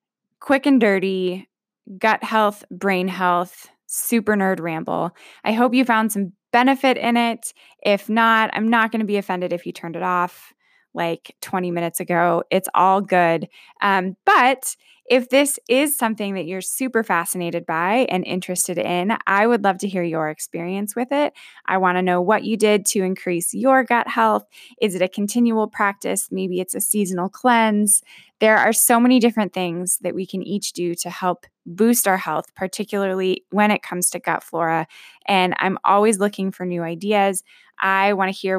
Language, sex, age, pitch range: English, female, 20-39, 180-225 Hz